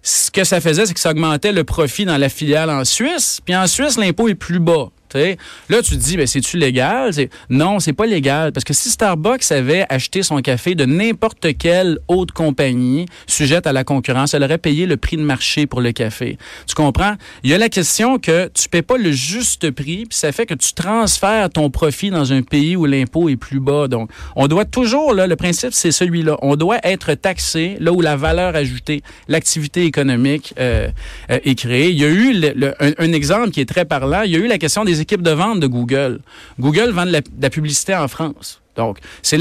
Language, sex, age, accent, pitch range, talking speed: French, male, 40-59, Canadian, 140-185 Hz, 235 wpm